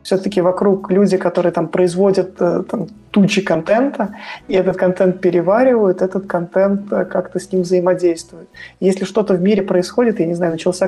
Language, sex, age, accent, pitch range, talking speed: Russian, male, 20-39, native, 180-200 Hz, 155 wpm